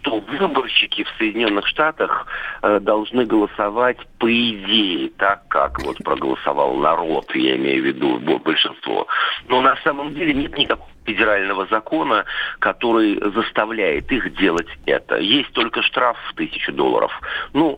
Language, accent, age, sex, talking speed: Russian, native, 50-69, male, 130 wpm